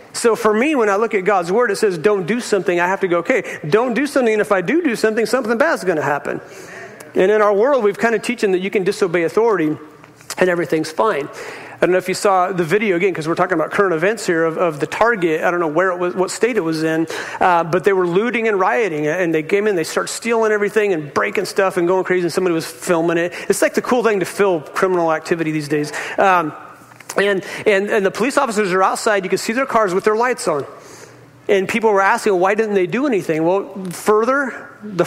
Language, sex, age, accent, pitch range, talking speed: English, male, 40-59, American, 175-215 Hz, 255 wpm